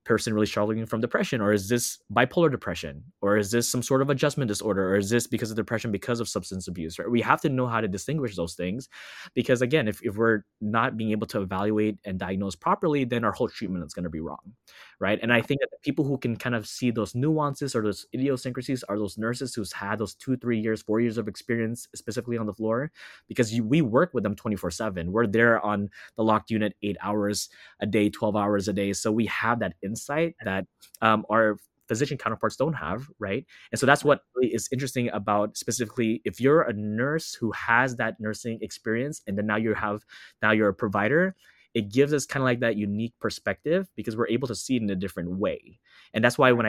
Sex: male